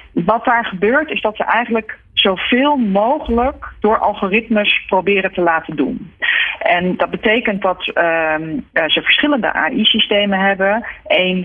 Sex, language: female, Dutch